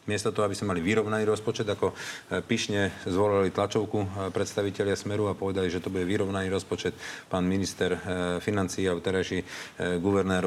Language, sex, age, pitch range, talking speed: Slovak, male, 40-59, 90-105 Hz, 155 wpm